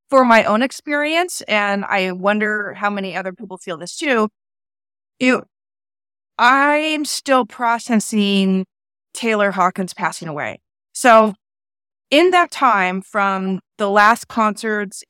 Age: 30-49